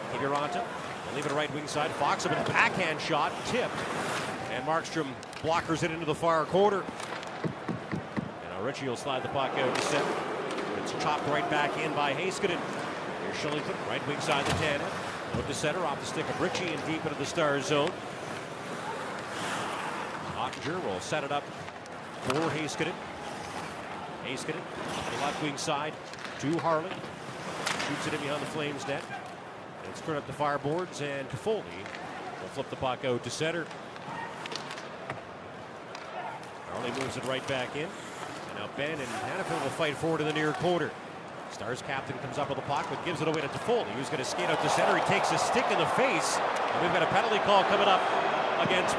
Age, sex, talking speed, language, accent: 40-59, male, 180 wpm, English, American